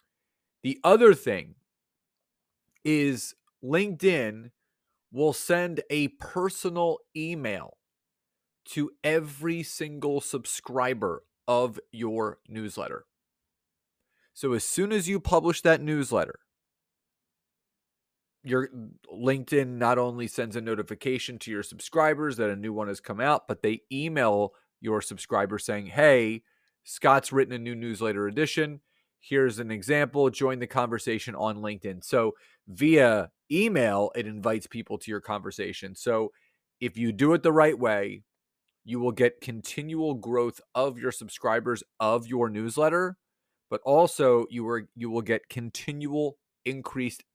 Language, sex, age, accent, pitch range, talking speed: English, male, 30-49, American, 110-150 Hz, 125 wpm